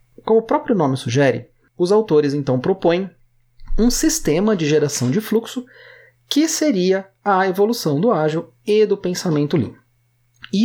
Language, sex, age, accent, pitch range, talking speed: Portuguese, male, 30-49, Brazilian, 155-245 Hz, 145 wpm